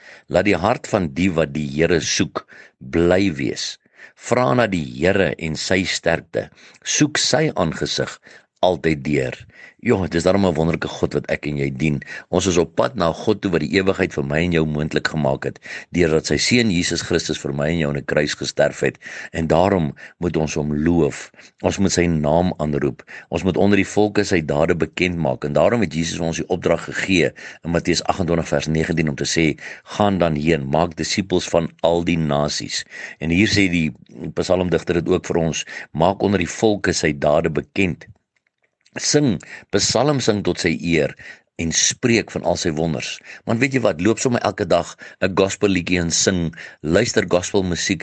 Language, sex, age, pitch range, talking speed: English, male, 50-69, 80-95 Hz, 195 wpm